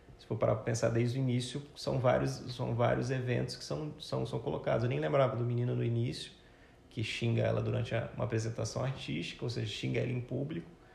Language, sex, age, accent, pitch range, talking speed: Portuguese, male, 20-39, Brazilian, 115-130 Hz, 210 wpm